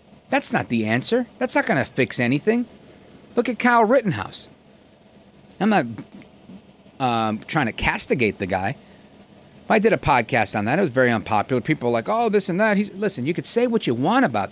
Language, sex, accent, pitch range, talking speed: English, male, American, 135-210 Hz, 200 wpm